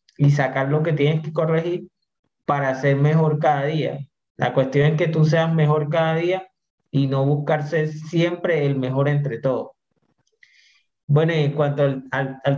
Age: 30-49